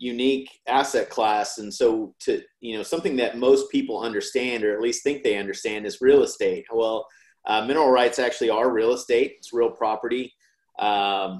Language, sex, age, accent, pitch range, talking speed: English, male, 30-49, American, 105-145 Hz, 180 wpm